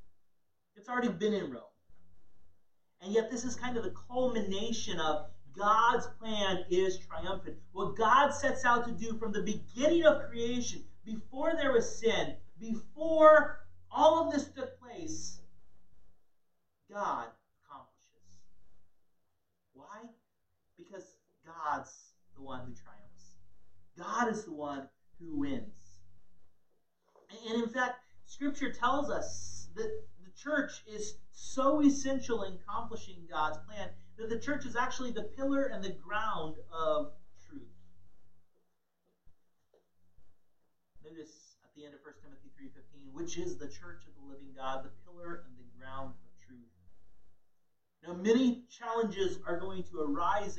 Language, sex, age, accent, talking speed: English, male, 40-59, American, 130 wpm